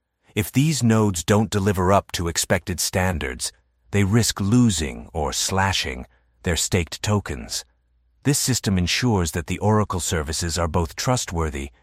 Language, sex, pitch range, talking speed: English, male, 75-95 Hz, 135 wpm